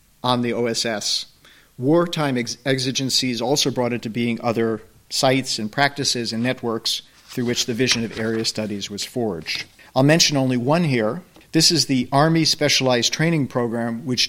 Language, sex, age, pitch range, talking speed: English, male, 50-69, 115-140 Hz, 165 wpm